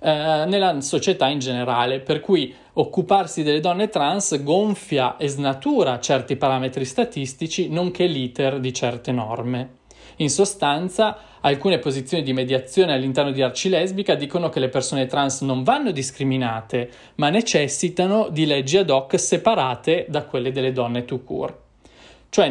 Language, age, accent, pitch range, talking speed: Italian, 20-39, native, 130-170 Hz, 140 wpm